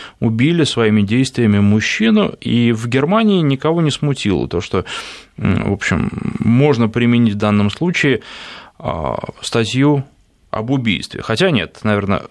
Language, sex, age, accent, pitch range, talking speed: Russian, male, 20-39, native, 105-140 Hz, 120 wpm